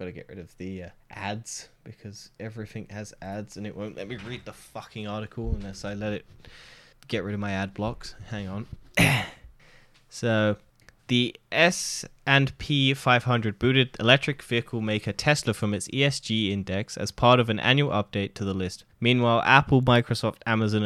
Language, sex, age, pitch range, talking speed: English, male, 10-29, 105-130 Hz, 175 wpm